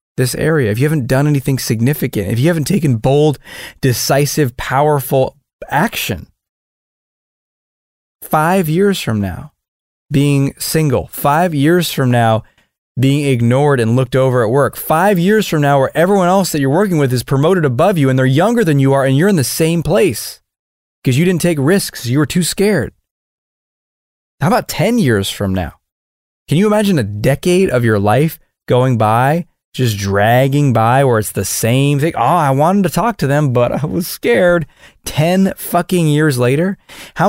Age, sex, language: 30-49, male, English